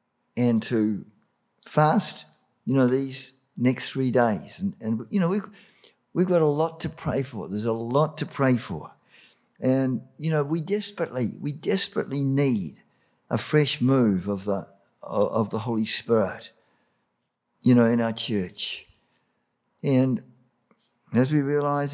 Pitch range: 120-160 Hz